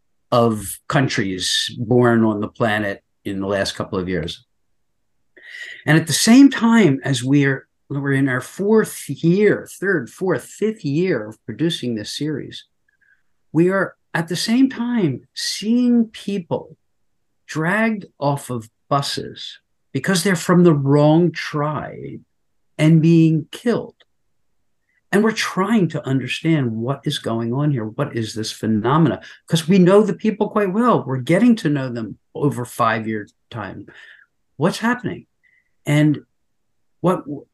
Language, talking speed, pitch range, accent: English, 135 wpm, 135-220 Hz, American